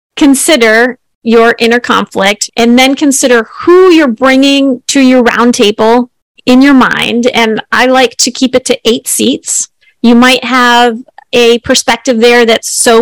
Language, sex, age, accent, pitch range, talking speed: English, female, 30-49, American, 215-250 Hz, 155 wpm